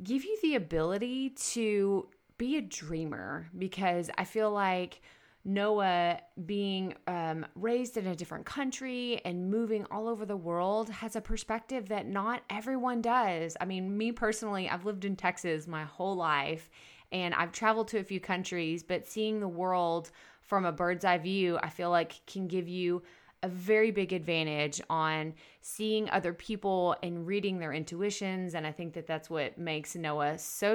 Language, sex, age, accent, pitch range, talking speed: English, female, 20-39, American, 170-220 Hz, 170 wpm